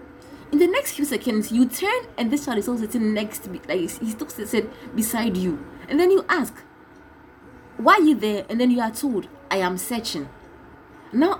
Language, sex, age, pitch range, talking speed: English, female, 20-39, 210-295 Hz, 195 wpm